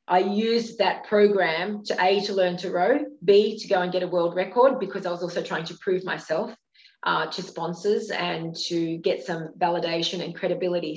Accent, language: Australian, English